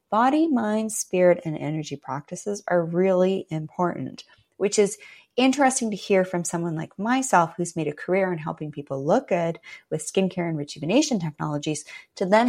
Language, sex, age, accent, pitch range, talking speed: English, female, 30-49, American, 170-235 Hz, 165 wpm